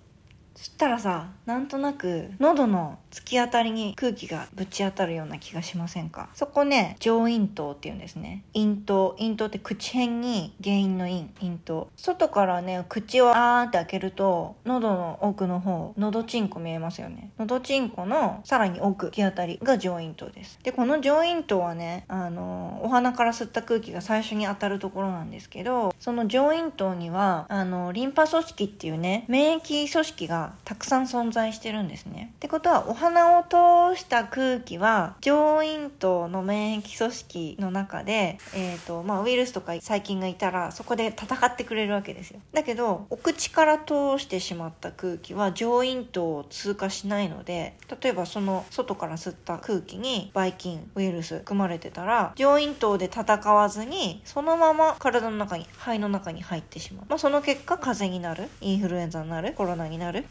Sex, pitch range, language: female, 180-245 Hz, Japanese